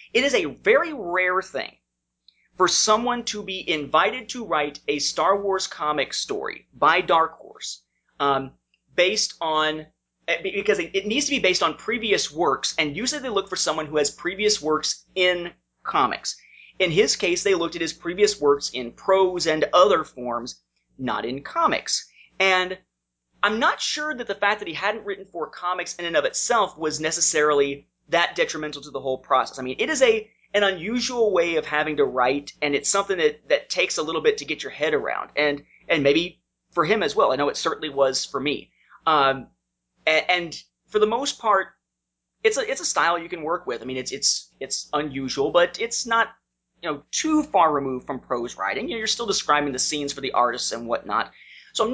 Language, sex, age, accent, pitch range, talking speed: English, male, 30-49, American, 140-205 Hz, 200 wpm